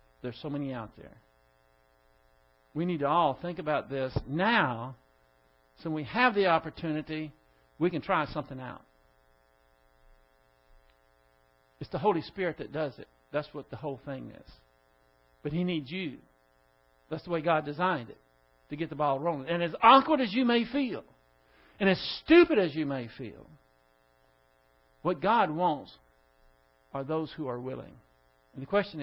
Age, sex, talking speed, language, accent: 60-79, male, 155 wpm, English, American